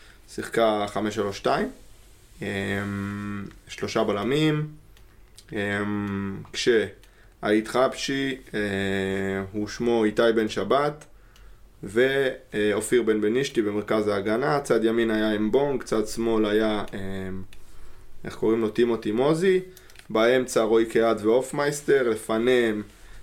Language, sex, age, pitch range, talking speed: Hebrew, male, 20-39, 105-130 Hz, 90 wpm